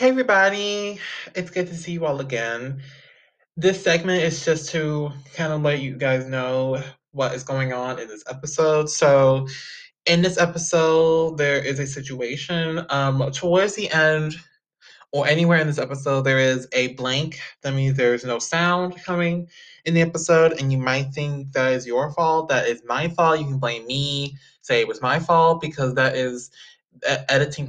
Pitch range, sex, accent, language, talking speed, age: 130-165 Hz, male, American, English, 180 wpm, 20-39